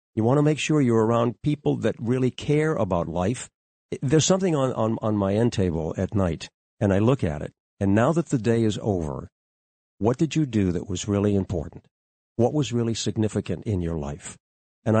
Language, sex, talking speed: English, male, 205 wpm